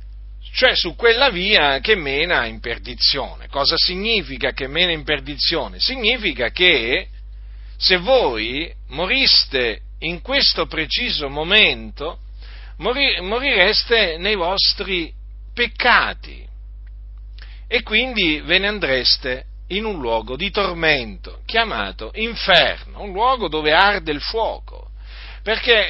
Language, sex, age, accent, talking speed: Italian, male, 50-69, native, 105 wpm